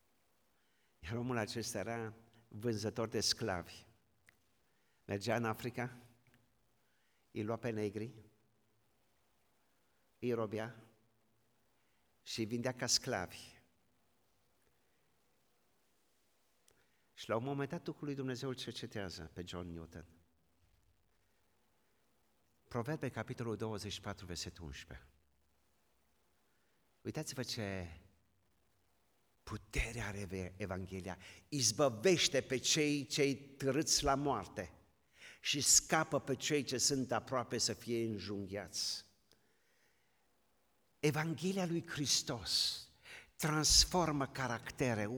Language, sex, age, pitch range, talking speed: Romanian, male, 50-69, 100-140 Hz, 85 wpm